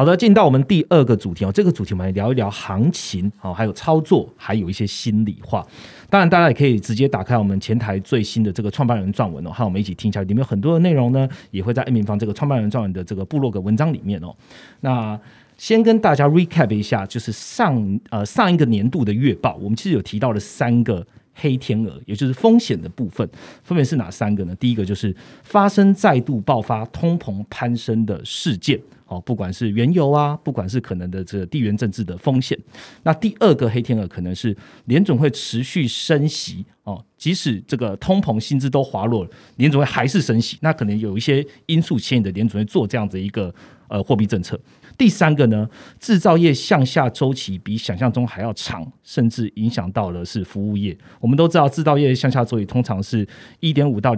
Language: Chinese